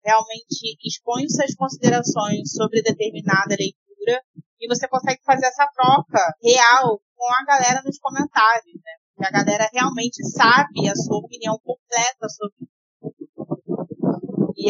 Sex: female